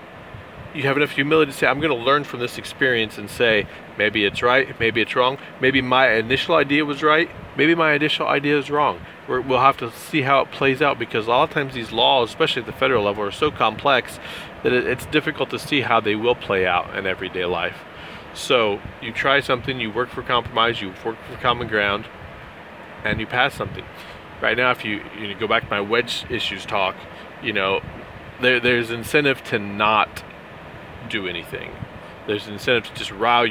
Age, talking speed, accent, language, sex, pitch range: 30-49, 200 wpm, American, English, male, 105-135 Hz